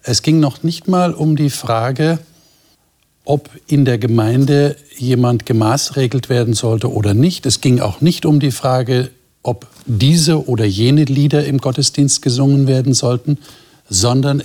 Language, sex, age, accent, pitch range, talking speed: German, male, 60-79, German, 105-140 Hz, 150 wpm